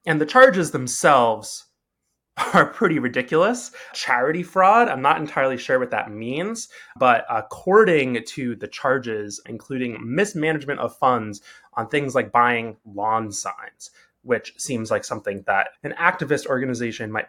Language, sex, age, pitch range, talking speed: English, male, 20-39, 110-150 Hz, 140 wpm